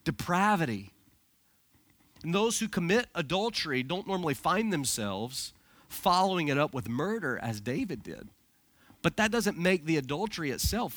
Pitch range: 140-195 Hz